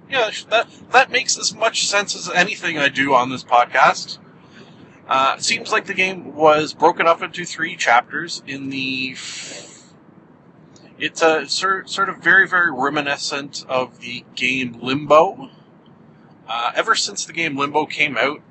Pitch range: 125-165 Hz